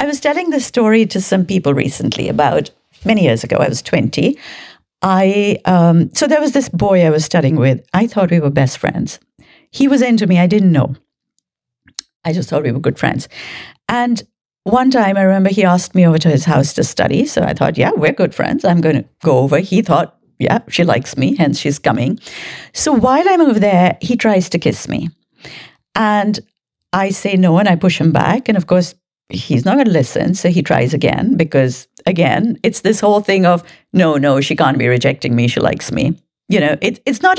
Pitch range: 160-220 Hz